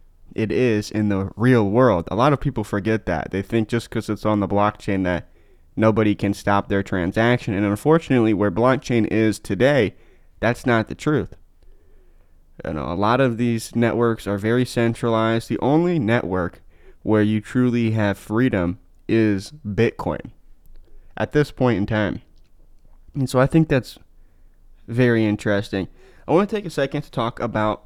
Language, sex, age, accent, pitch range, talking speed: English, male, 20-39, American, 100-125 Hz, 165 wpm